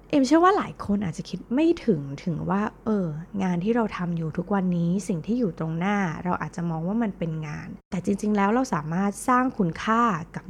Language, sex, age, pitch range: Thai, female, 20-39, 165-210 Hz